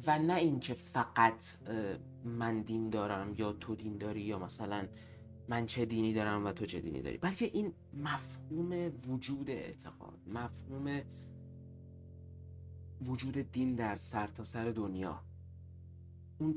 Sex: male